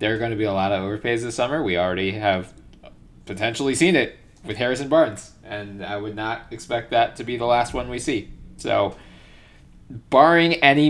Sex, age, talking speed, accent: male, 20-39, 200 wpm, American